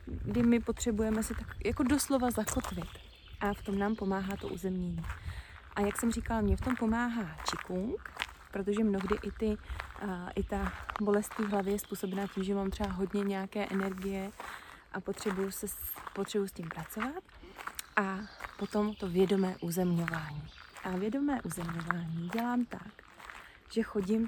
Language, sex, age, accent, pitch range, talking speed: Czech, female, 30-49, native, 195-230 Hz, 155 wpm